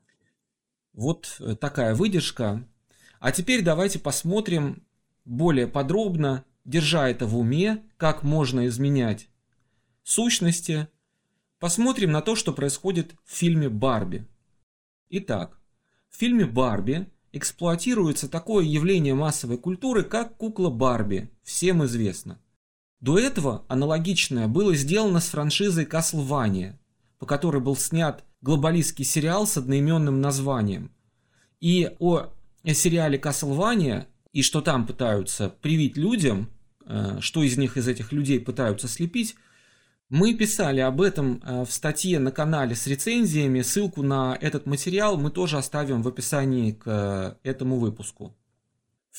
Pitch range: 125-170 Hz